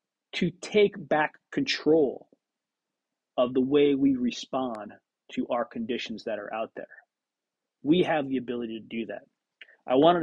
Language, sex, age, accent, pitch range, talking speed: English, male, 30-49, American, 125-170 Hz, 145 wpm